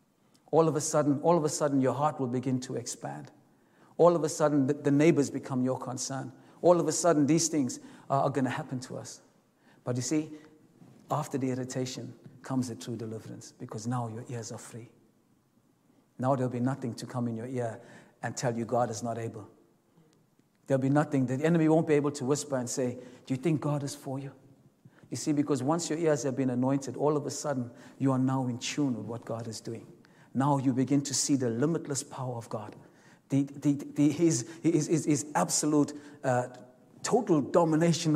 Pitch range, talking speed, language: 125-150 Hz, 210 wpm, English